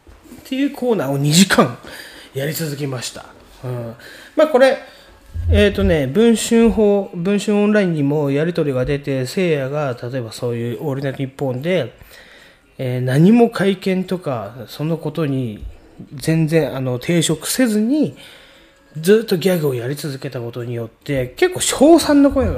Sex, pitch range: male, 120-190 Hz